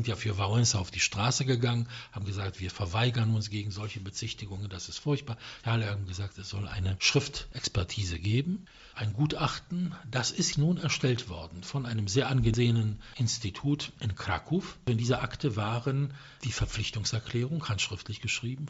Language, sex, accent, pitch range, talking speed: English, male, German, 105-140 Hz, 160 wpm